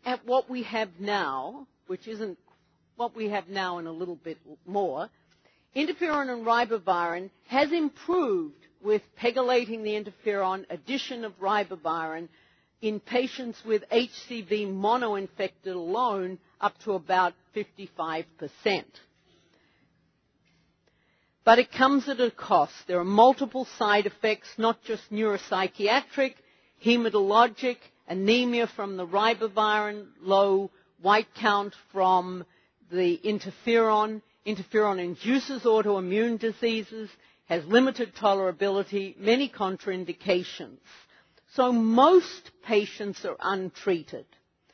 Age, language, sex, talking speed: 50-69, English, female, 105 wpm